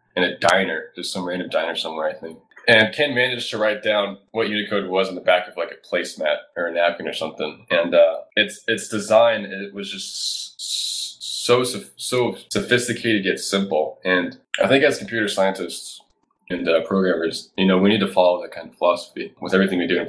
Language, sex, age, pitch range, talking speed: English, male, 20-39, 95-115 Hz, 205 wpm